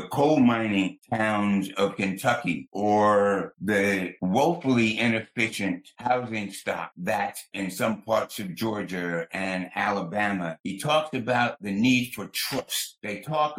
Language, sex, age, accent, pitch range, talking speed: English, male, 60-79, American, 90-115 Hz, 125 wpm